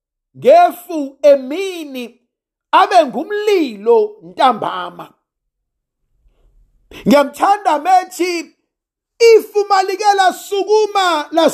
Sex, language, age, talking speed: male, English, 50-69, 75 wpm